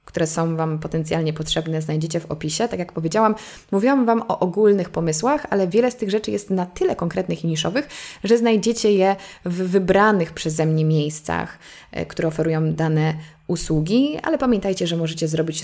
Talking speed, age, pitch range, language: 170 wpm, 20-39, 155-190 Hz, Polish